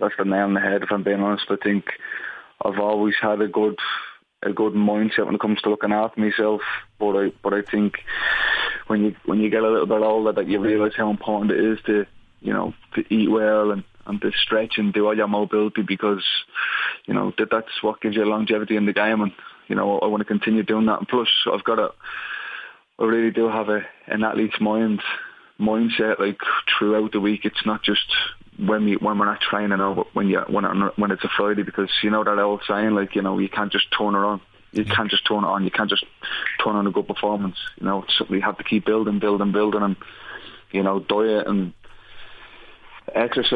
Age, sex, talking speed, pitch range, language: 20-39, male, 225 wpm, 105-110 Hz, English